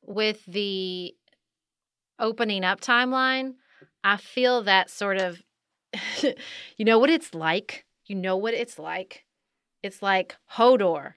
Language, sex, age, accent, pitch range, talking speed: English, female, 30-49, American, 185-235 Hz, 125 wpm